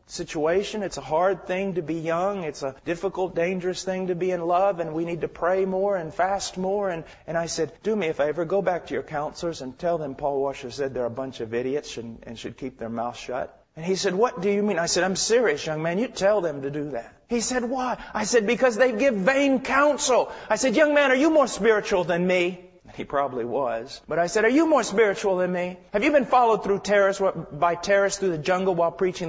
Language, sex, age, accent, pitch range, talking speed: English, male, 40-59, American, 165-205 Hz, 250 wpm